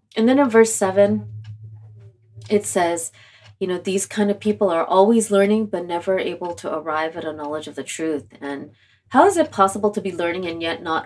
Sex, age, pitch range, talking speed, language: female, 30-49, 135-170 Hz, 205 wpm, English